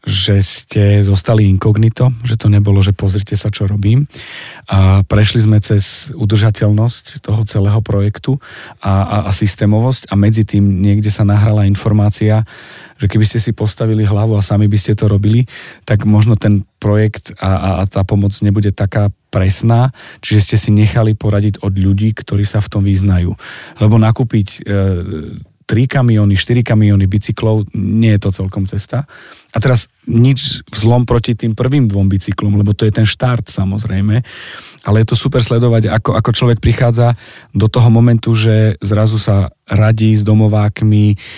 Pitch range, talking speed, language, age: 105-115 Hz, 165 wpm, Slovak, 40-59